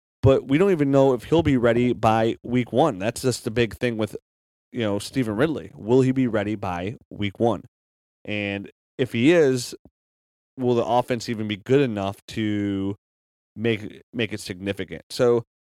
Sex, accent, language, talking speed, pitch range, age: male, American, English, 175 wpm, 85-120 Hz, 30-49